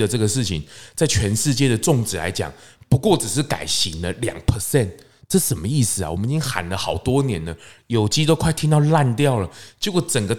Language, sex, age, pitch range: Chinese, male, 20-39, 110-150 Hz